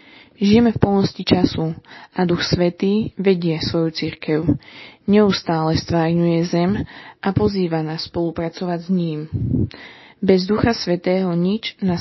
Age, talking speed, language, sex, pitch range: 20-39, 120 wpm, Slovak, female, 165-190 Hz